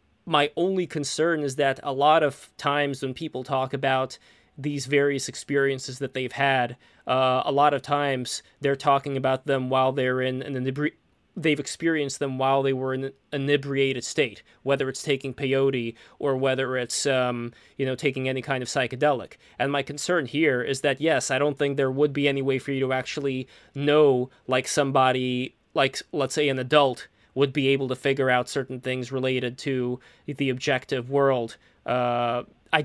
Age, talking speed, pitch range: 20-39, 185 wpm, 130-145 Hz